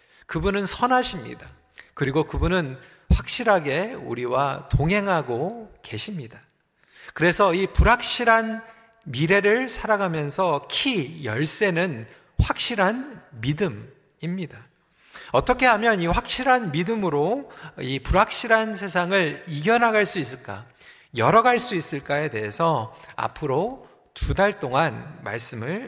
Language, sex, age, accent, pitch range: Korean, male, 40-59, native, 145-215 Hz